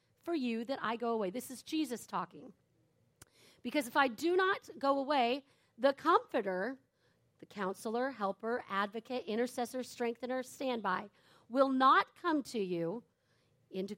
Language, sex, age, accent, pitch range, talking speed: English, female, 40-59, American, 230-305 Hz, 135 wpm